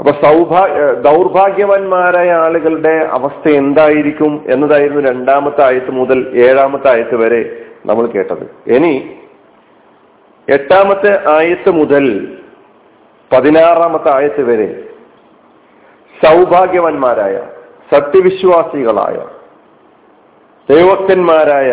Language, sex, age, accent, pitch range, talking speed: Malayalam, male, 50-69, native, 150-185 Hz, 70 wpm